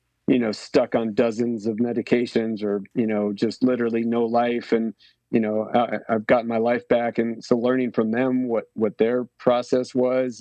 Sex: male